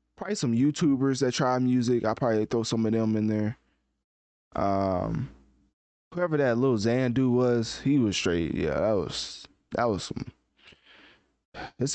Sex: male